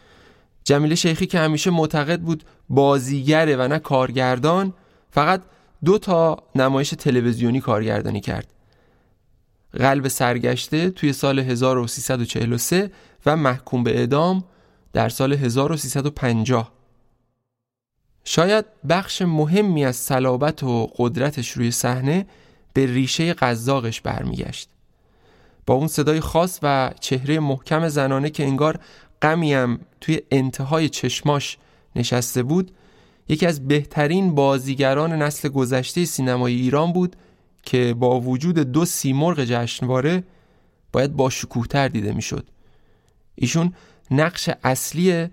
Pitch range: 125-155 Hz